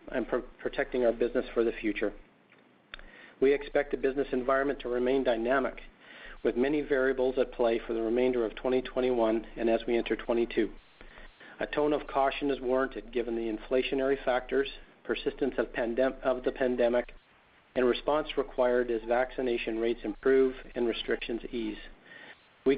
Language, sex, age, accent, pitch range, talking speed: English, male, 40-59, American, 120-135 Hz, 150 wpm